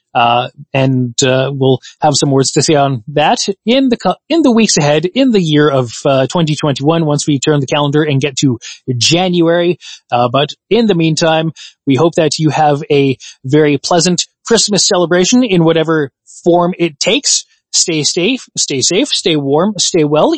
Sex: male